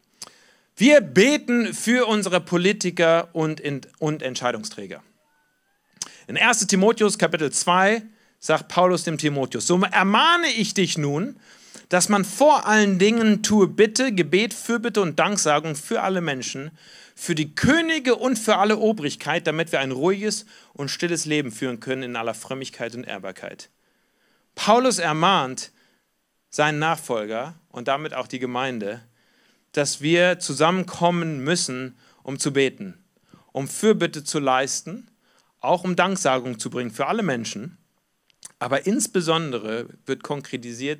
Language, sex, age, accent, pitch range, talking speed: German, male, 40-59, German, 135-200 Hz, 130 wpm